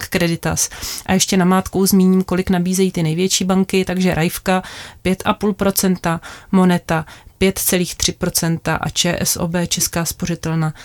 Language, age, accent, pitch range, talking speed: Czech, 30-49, native, 165-195 Hz, 110 wpm